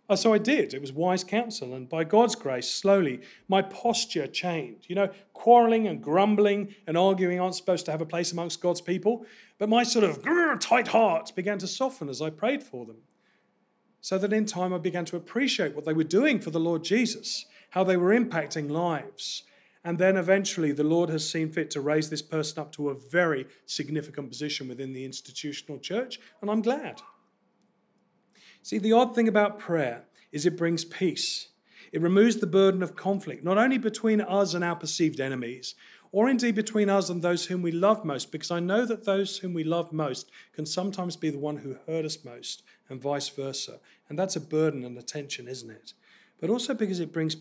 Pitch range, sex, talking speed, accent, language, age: 155-205 Hz, male, 205 wpm, British, English, 40-59